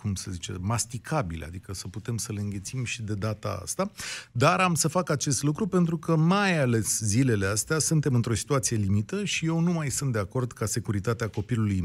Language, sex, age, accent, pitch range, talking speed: Romanian, male, 30-49, native, 110-160 Hz, 205 wpm